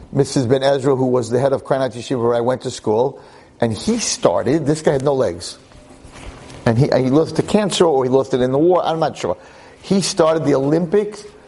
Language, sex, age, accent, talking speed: English, male, 50-69, American, 225 wpm